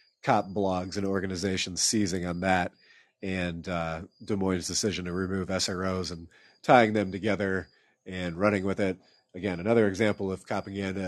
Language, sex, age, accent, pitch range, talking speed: English, male, 40-59, American, 95-115 Hz, 150 wpm